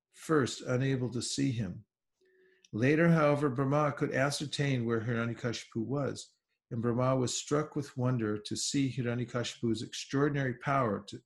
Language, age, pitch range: English, 50-69, 120-150 Hz